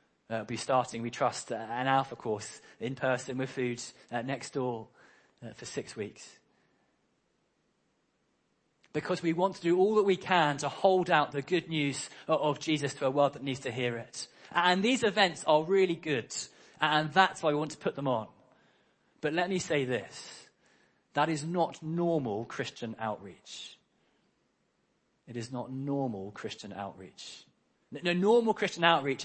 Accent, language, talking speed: British, English, 170 wpm